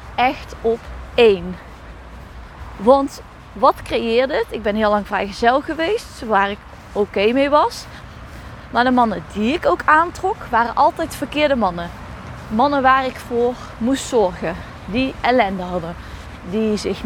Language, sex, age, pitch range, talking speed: Dutch, female, 20-39, 205-285 Hz, 145 wpm